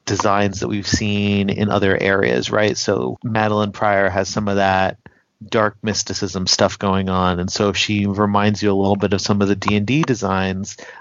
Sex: male